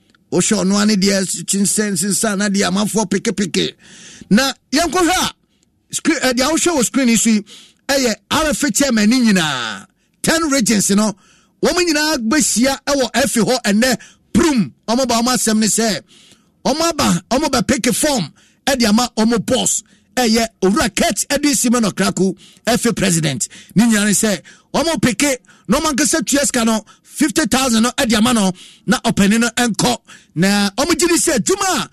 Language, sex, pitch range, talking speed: English, male, 185-250 Hz, 145 wpm